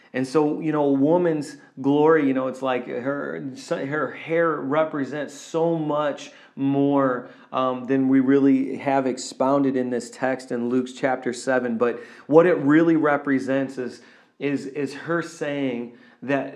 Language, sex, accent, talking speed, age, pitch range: English, male, American, 145 wpm, 30-49, 135-160 Hz